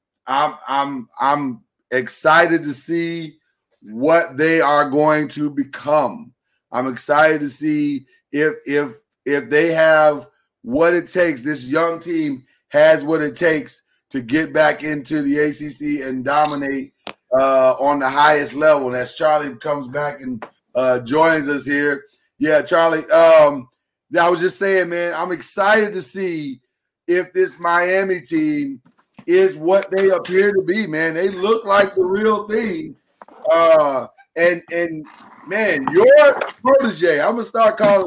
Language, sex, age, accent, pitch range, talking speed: English, male, 30-49, American, 150-205 Hz, 150 wpm